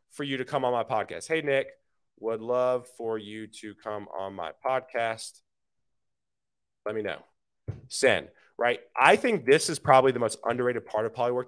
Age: 30-49